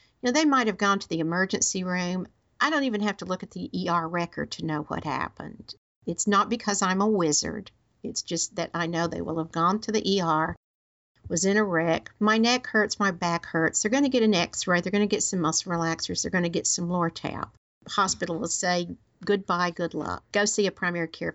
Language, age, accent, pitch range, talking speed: English, 50-69, American, 175-225 Hz, 230 wpm